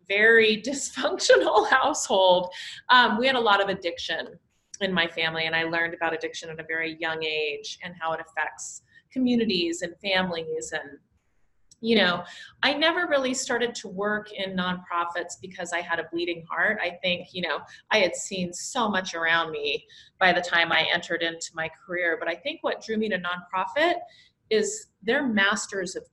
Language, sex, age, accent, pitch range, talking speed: English, female, 30-49, American, 165-205 Hz, 180 wpm